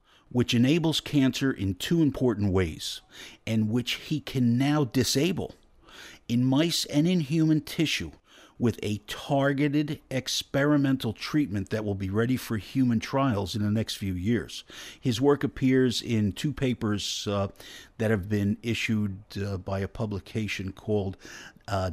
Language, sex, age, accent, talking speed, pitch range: English, male, 50-69, American, 145 wpm, 105-140 Hz